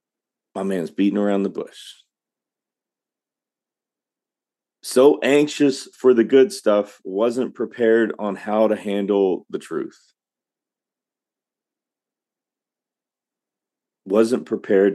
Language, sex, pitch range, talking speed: English, male, 85-100 Hz, 90 wpm